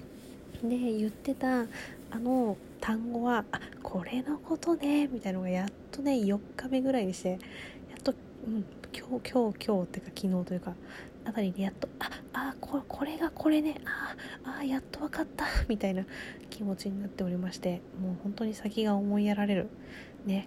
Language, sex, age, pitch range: Japanese, female, 20-39, 195-245 Hz